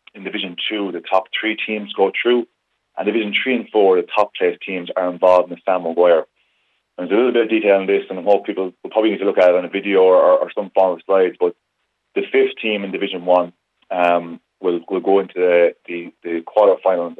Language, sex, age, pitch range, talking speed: English, male, 20-39, 85-105 Hz, 235 wpm